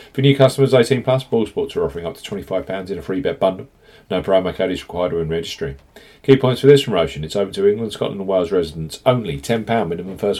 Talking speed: 235 wpm